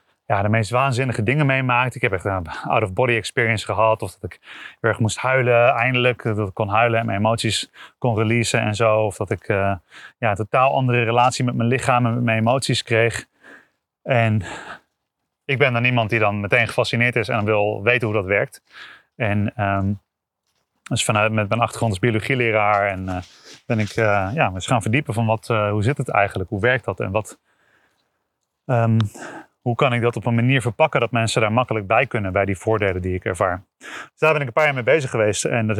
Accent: Dutch